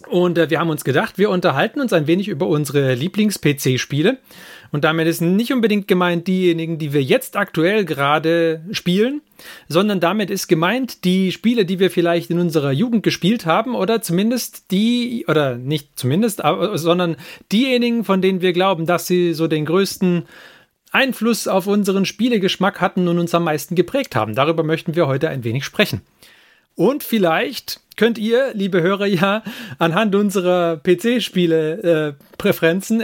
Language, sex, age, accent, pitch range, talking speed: German, male, 40-59, German, 160-205 Hz, 160 wpm